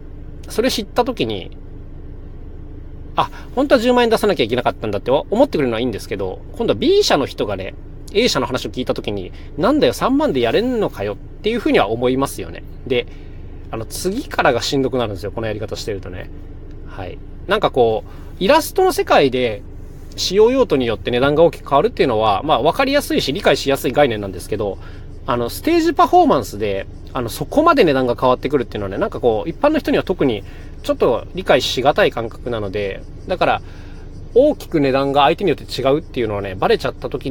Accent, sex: native, male